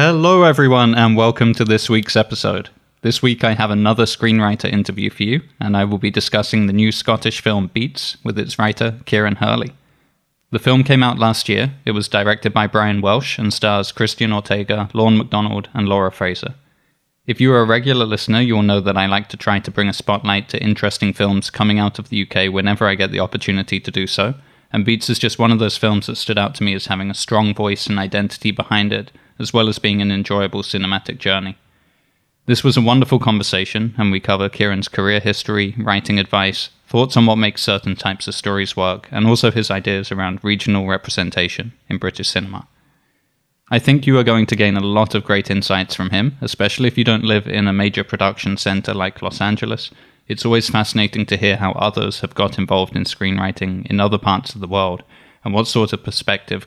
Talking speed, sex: 210 wpm, male